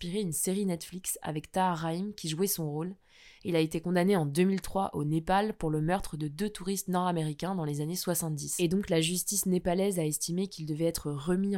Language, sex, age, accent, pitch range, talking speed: French, female, 20-39, French, 165-195 Hz, 200 wpm